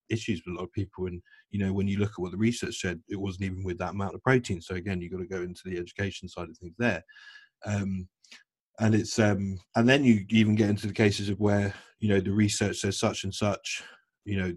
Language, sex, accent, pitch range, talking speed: English, male, British, 95-110 Hz, 255 wpm